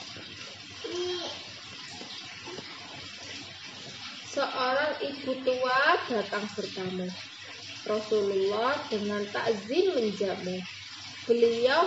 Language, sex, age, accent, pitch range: Indonesian, female, 20-39, native, 205-340 Hz